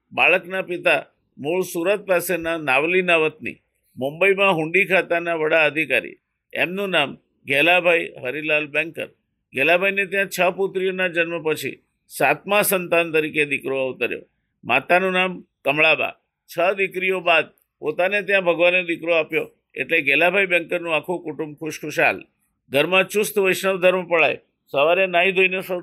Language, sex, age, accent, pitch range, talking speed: Gujarati, male, 50-69, native, 155-185 Hz, 125 wpm